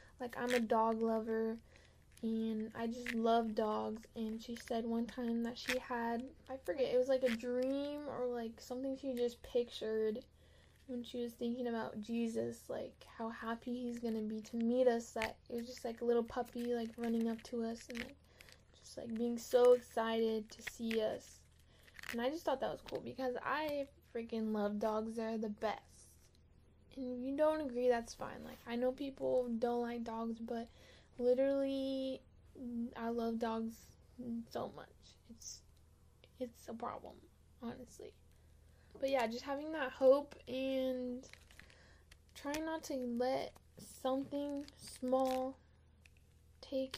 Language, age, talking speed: English, 10-29, 155 wpm